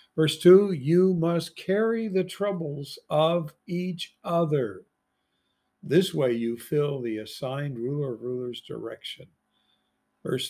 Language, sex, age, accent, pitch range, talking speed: English, male, 60-79, American, 125-170 Hz, 115 wpm